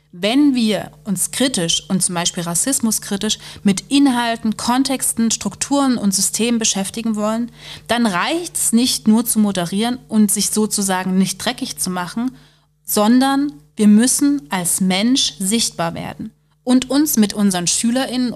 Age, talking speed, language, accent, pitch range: 30-49, 135 wpm, German, German, 170-230 Hz